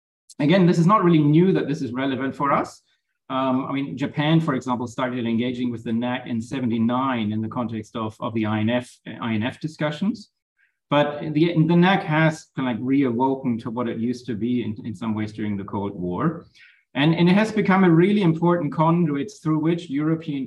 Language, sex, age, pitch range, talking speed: English, male, 30-49, 115-150 Hz, 200 wpm